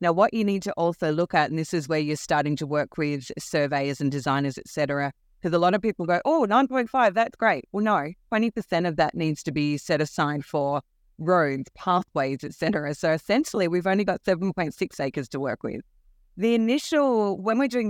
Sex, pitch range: female, 150-195 Hz